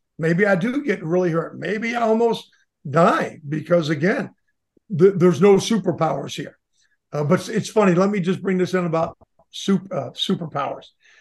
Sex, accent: male, American